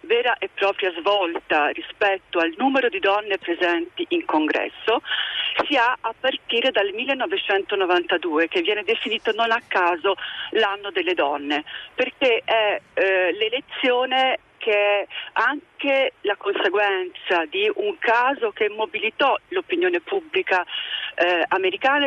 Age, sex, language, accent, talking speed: 40-59, female, Italian, native, 120 wpm